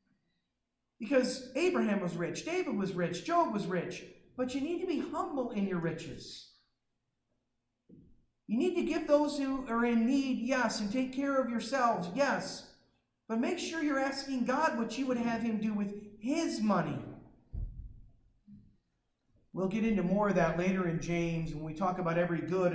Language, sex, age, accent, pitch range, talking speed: English, male, 50-69, American, 165-245 Hz, 170 wpm